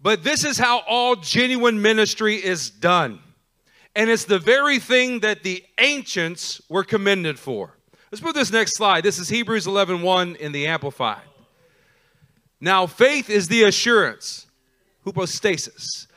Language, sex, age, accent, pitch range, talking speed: English, male, 40-59, American, 165-215 Hz, 140 wpm